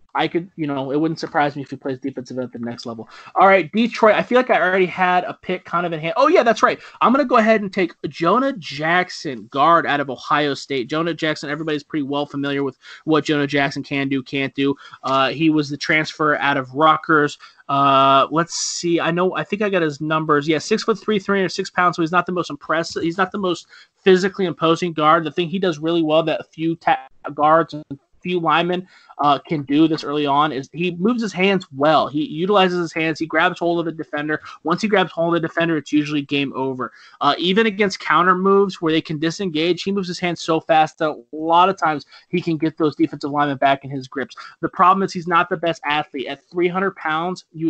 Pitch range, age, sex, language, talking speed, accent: 145-180 Hz, 30-49, male, English, 240 wpm, American